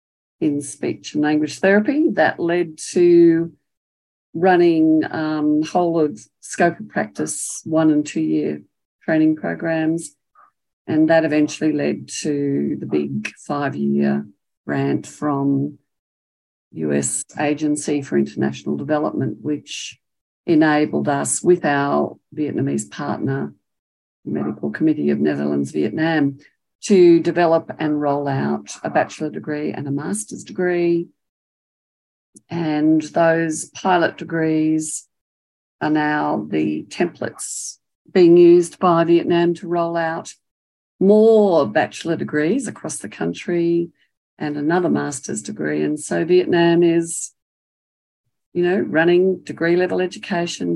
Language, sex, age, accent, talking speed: English, female, 50-69, Australian, 115 wpm